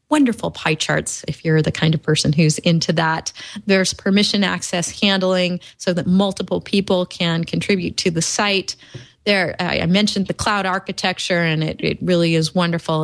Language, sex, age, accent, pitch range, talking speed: English, female, 30-49, American, 165-195 Hz, 170 wpm